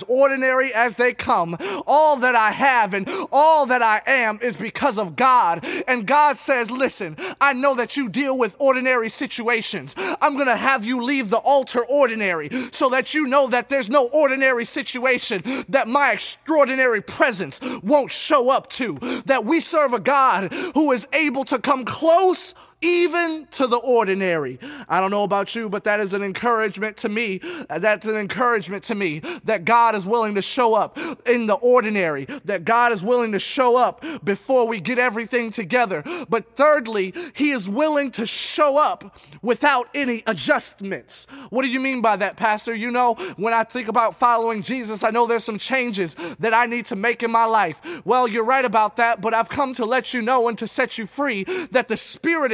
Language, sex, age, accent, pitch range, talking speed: English, male, 20-39, American, 220-275 Hz, 190 wpm